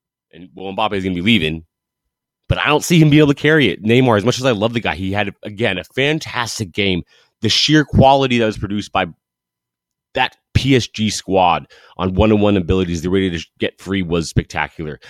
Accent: American